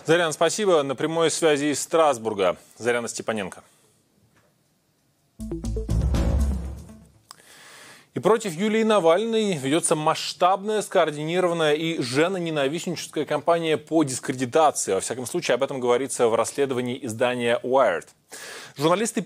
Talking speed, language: 105 wpm, Russian